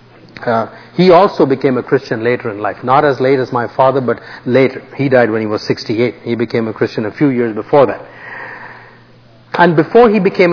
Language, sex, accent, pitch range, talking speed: English, male, Indian, 125-165 Hz, 205 wpm